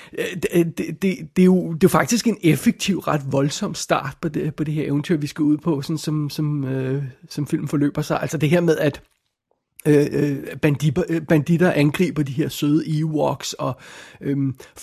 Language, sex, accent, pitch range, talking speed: Danish, male, native, 145-170 Hz, 190 wpm